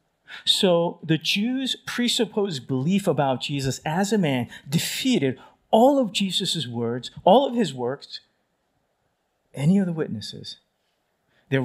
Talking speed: 125 wpm